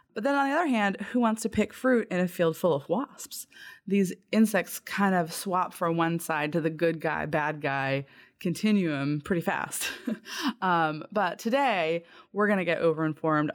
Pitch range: 155-205 Hz